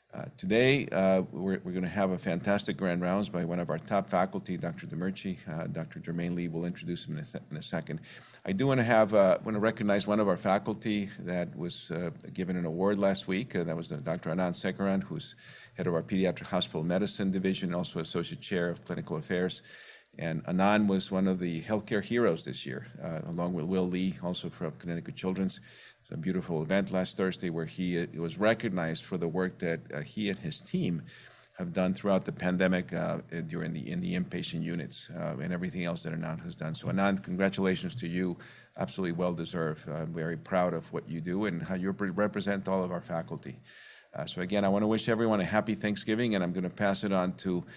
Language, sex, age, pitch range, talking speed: English, male, 50-69, 90-105 Hz, 210 wpm